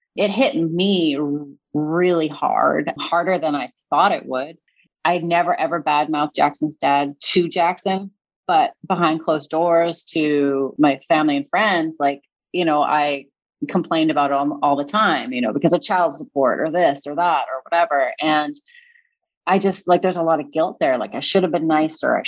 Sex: female